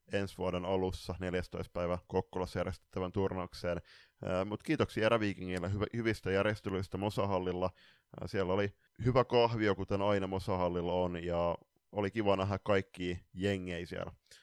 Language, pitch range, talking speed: Finnish, 90-105 Hz, 120 wpm